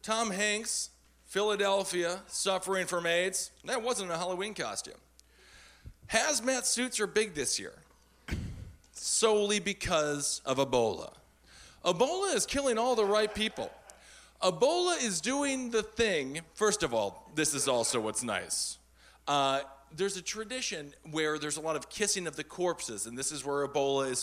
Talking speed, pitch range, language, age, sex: 150 wpm, 140-205 Hz, English, 40-59, male